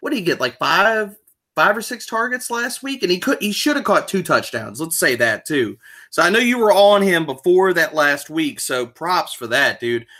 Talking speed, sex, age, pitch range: 240 wpm, male, 30-49, 135-190 Hz